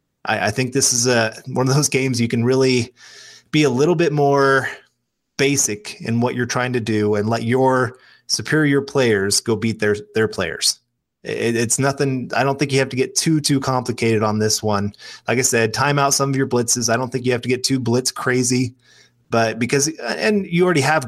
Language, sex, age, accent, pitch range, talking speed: English, male, 20-39, American, 115-140 Hz, 215 wpm